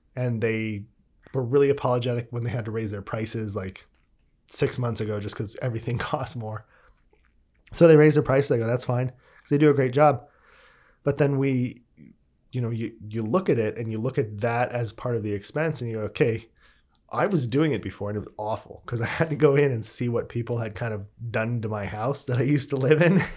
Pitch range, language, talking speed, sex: 110-140 Hz, English, 235 wpm, male